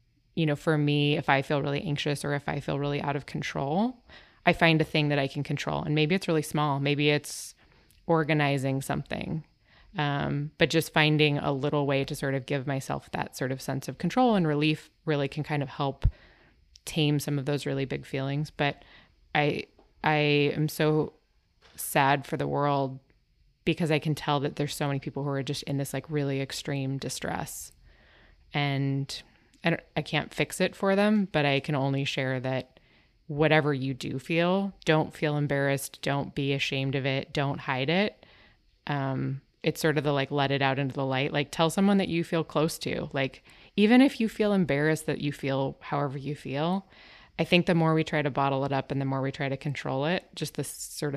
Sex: female